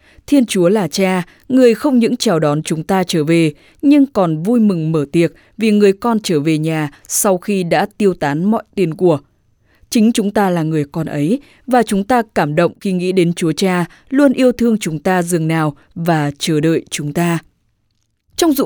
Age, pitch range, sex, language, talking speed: 20-39, 160-225 Hz, female, English, 205 wpm